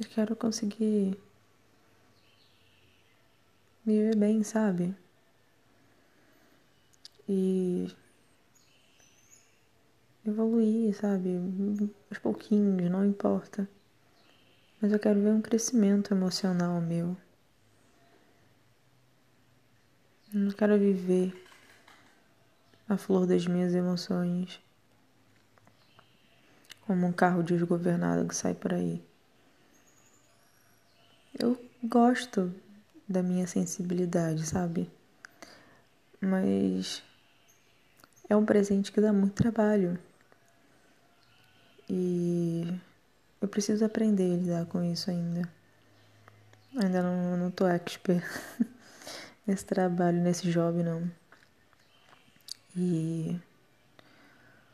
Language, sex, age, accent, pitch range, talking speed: Portuguese, female, 20-39, Brazilian, 135-200 Hz, 80 wpm